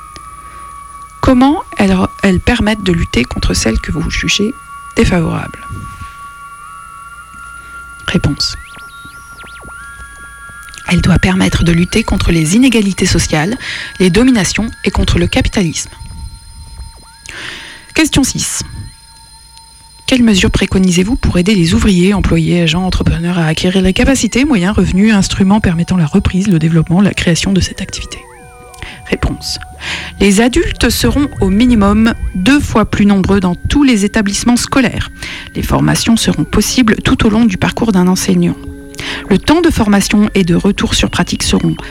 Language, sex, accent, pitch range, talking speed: French, female, French, 175-240 Hz, 135 wpm